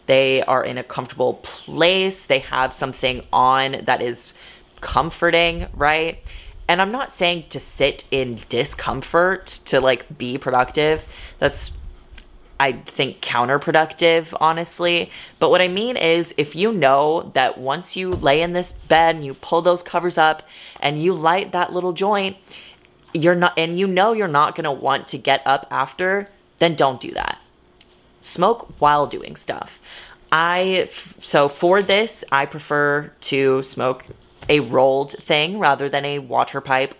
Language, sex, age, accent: English, female, 20-39, American